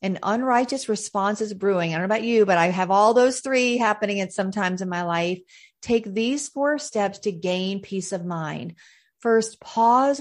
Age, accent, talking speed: 40-59, American, 195 wpm